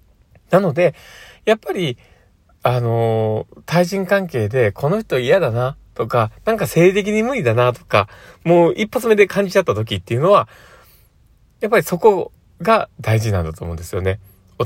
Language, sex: Japanese, male